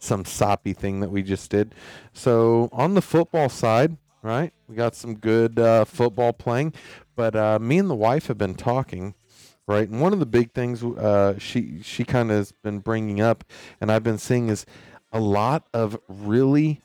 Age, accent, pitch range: 40-59, American, 100-125 Hz